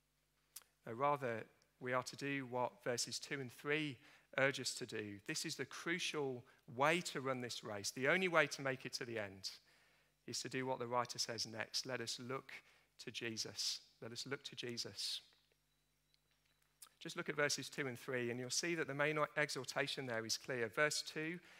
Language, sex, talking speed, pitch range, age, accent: English, male, 195 wpm, 125-155 Hz, 40-59, British